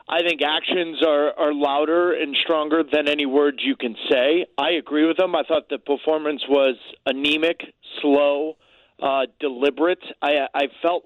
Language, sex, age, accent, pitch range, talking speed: English, male, 40-59, American, 145-185 Hz, 165 wpm